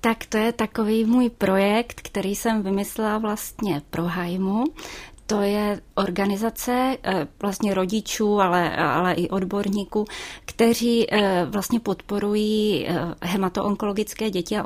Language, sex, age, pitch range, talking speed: Czech, female, 20-39, 180-210 Hz, 110 wpm